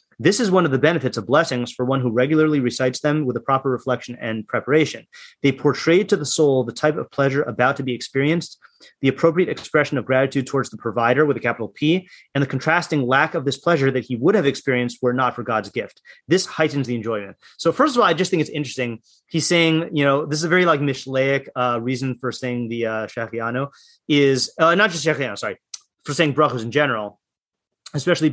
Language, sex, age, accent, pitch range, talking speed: English, male, 30-49, American, 120-155 Hz, 220 wpm